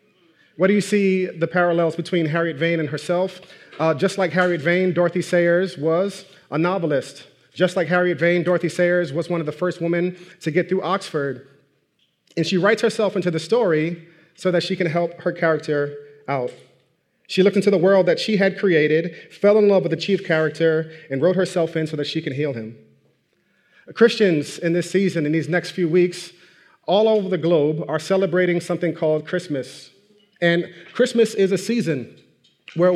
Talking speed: 185 wpm